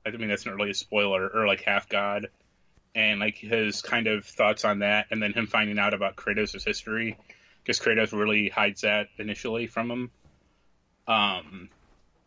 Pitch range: 100-110 Hz